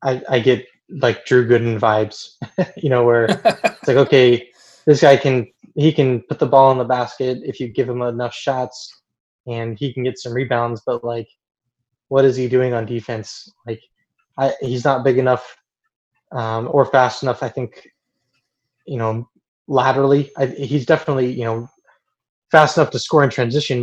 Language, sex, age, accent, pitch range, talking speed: English, male, 20-39, American, 115-135 Hz, 175 wpm